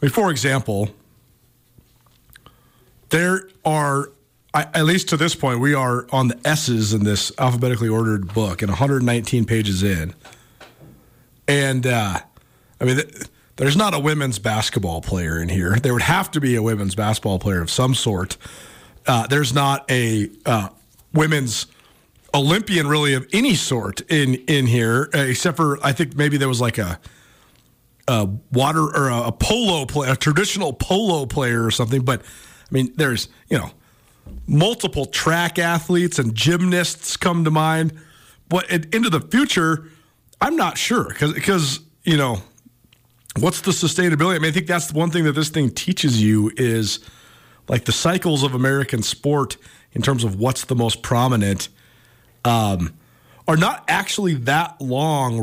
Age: 40-59